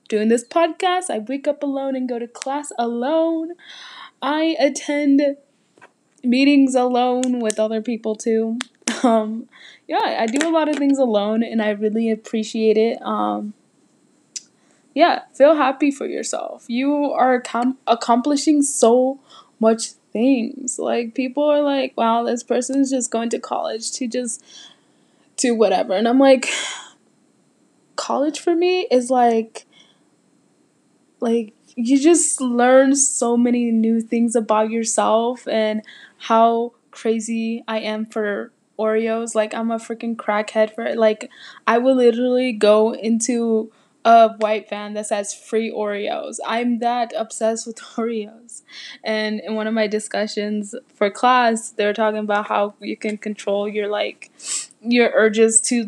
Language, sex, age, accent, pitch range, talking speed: English, female, 10-29, American, 220-265 Hz, 145 wpm